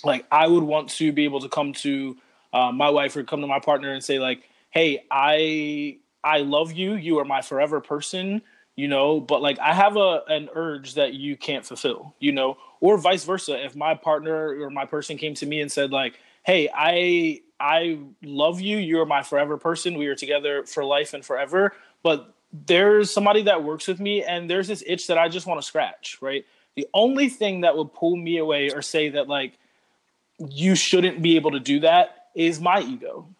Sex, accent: male, American